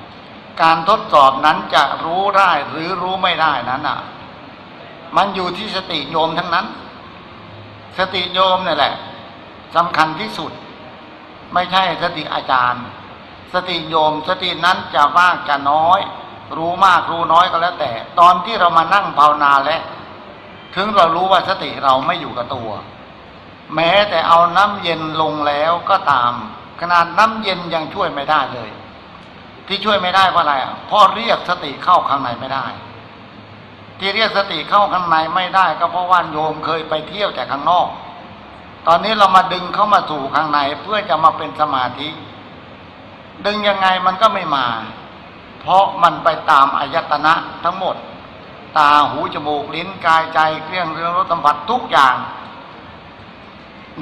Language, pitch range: Thai, 145-185 Hz